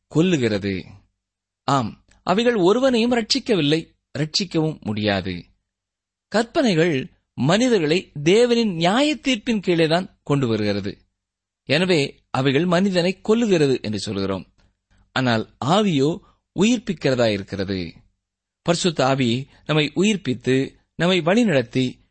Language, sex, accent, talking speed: Tamil, male, native, 85 wpm